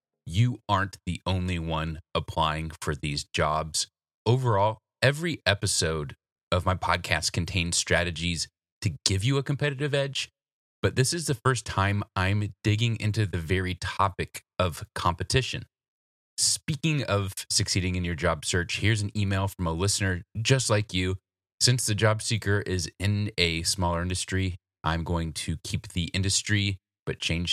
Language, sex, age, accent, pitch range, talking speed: English, male, 30-49, American, 85-110 Hz, 155 wpm